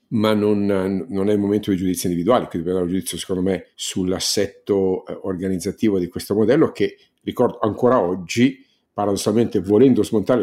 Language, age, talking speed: Italian, 50-69, 155 wpm